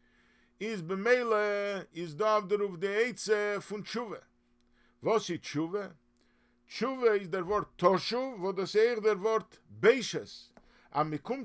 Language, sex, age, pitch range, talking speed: English, male, 50-69, 170-235 Hz, 125 wpm